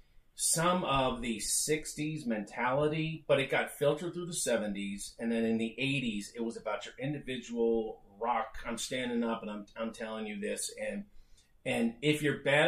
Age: 40-59